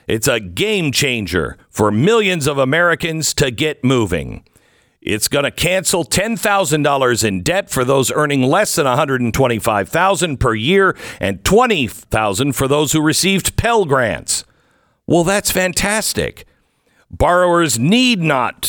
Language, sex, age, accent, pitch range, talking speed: English, male, 50-69, American, 120-170 Hz, 130 wpm